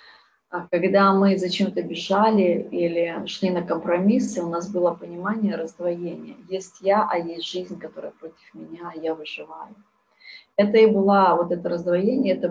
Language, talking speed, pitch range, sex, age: Russian, 160 wpm, 175-205 Hz, female, 30-49